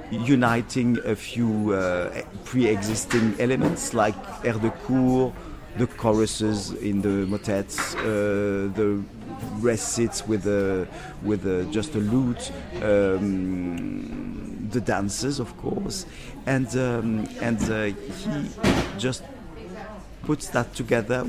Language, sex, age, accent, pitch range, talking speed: English, male, 50-69, French, 105-125 Hz, 110 wpm